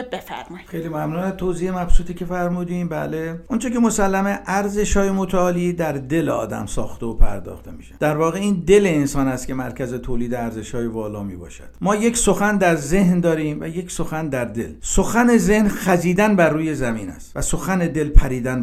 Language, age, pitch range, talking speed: Persian, 50-69, 140-190 Hz, 170 wpm